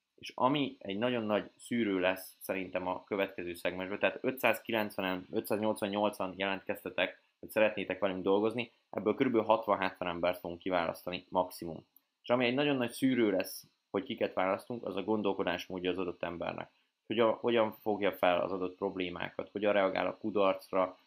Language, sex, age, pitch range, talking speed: Hungarian, male, 20-39, 90-110 Hz, 155 wpm